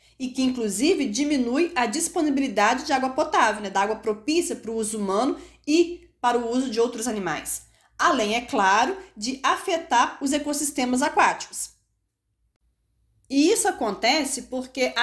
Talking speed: 150 wpm